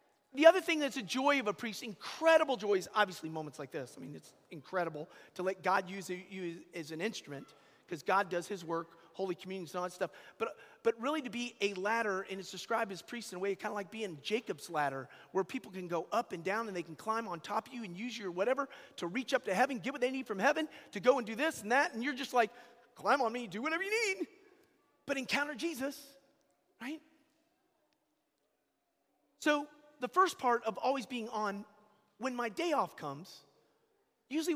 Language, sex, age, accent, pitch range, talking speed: English, male, 40-59, American, 185-260 Hz, 220 wpm